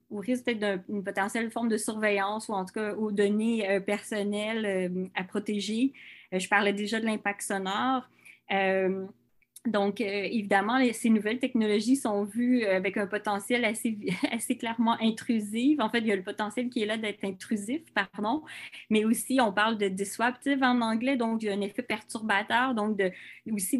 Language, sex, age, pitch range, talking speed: English, female, 20-39, 200-235 Hz, 185 wpm